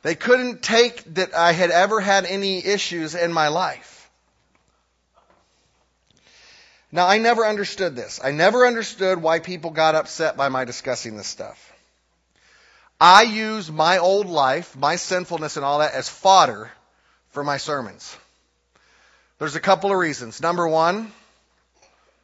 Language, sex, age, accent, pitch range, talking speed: English, male, 30-49, American, 140-195 Hz, 140 wpm